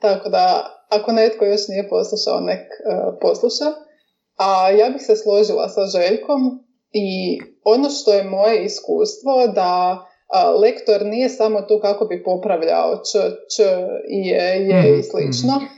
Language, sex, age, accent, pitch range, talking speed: Croatian, female, 20-39, native, 195-225 Hz, 135 wpm